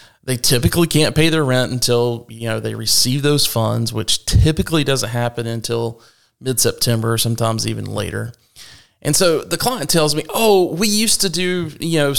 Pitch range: 115-145 Hz